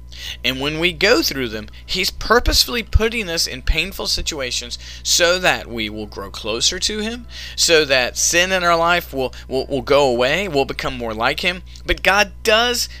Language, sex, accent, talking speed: English, male, American, 185 wpm